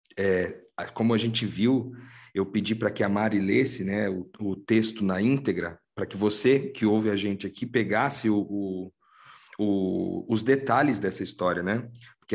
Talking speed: 155 wpm